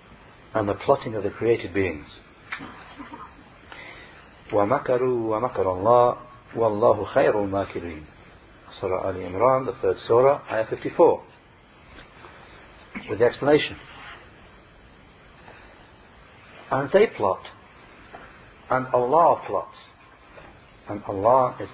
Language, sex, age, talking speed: English, male, 60-79, 90 wpm